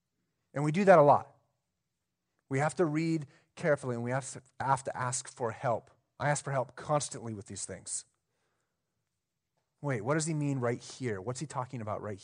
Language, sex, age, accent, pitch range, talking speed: English, male, 30-49, American, 125-160 Hz, 185 wpm